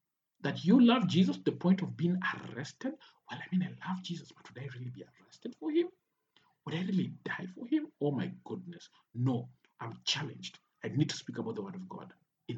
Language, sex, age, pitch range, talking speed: English, male, 50-69, 140-200 Hz, 220 wpm